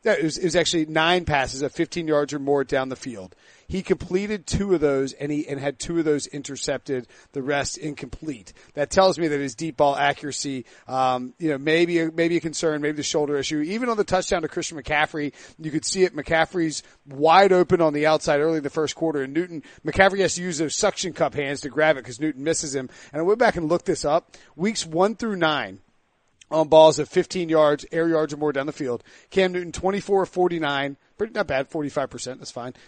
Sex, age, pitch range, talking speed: male, 40-59, 145-180 Hz, 225 wpm